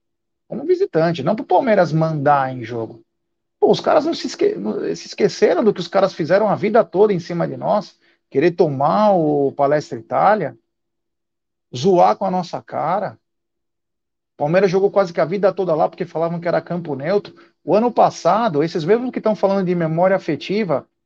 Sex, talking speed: male, 180 wpm